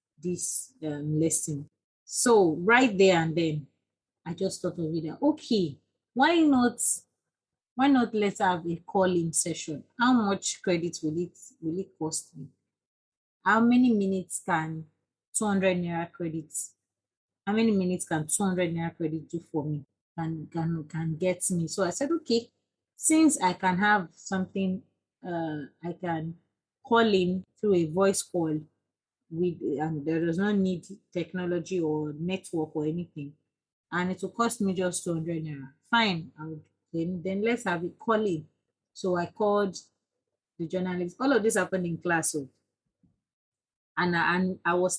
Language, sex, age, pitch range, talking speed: English, female, 30-49, 165-195 Hz, 150 wpm